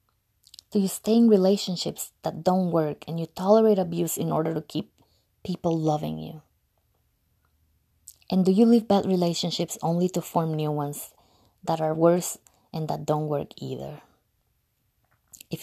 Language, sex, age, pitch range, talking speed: English, female, 20-39, 150-200 Hz, 150 wpm